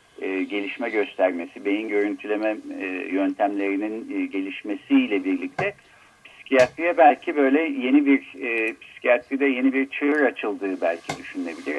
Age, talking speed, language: 50-69, 95 wpm, Turkish